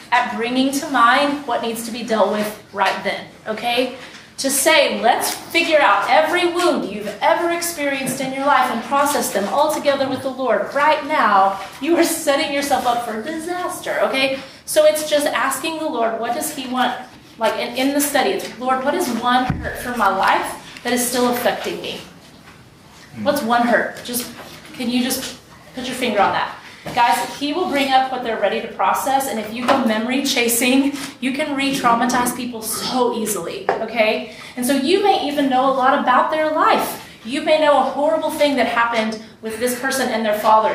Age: 30-49